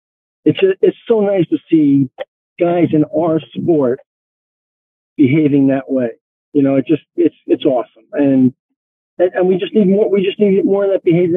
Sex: male